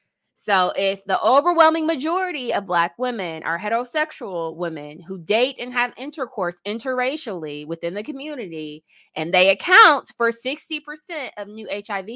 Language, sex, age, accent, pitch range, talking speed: English, female, 20-39, American, 170-245 Hz, 140 wpm